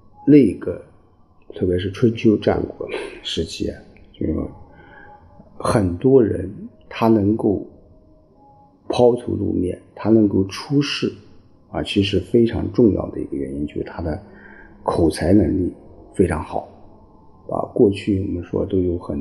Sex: male